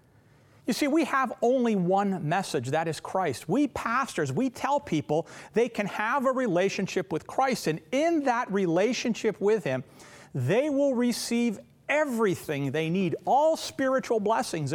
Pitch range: 155-255 Hz